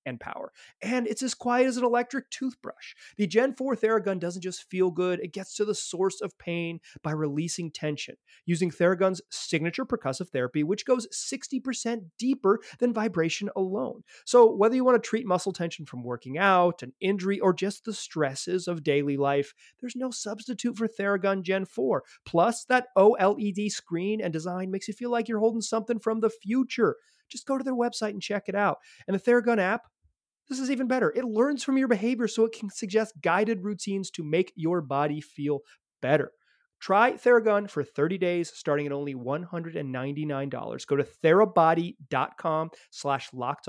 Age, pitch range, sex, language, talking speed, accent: 30-49, 160-230 Hz, male, English, 180 wpm, American